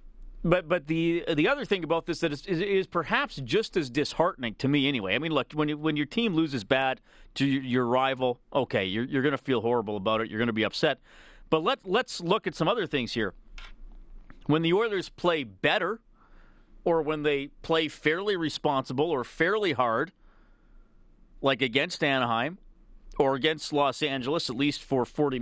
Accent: American